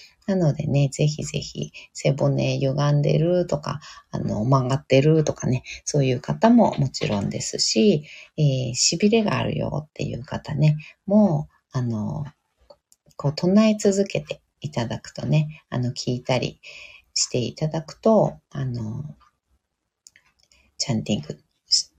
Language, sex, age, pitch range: Japanese, female, 40-59, 130-185 Hz